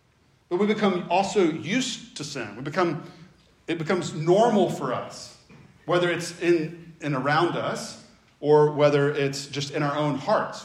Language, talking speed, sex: English, 160 wpm, male